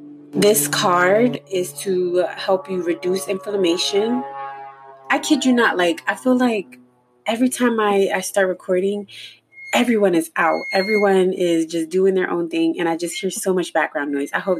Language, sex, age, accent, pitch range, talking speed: English, female, 20-39, American, 165-205 Hz, 175 wpm